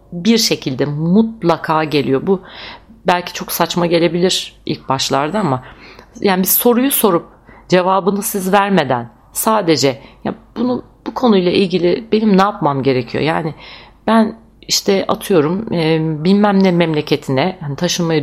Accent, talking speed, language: native, 130 wpm, Turkish